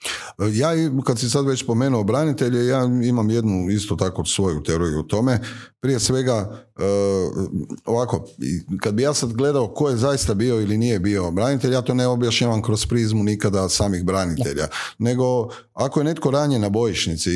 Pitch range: 90-115 Hz